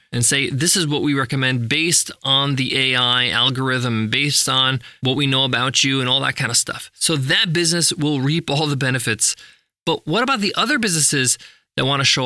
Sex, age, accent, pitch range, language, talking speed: male, 20-39, American, 135-190 Hz, English, 210 wpm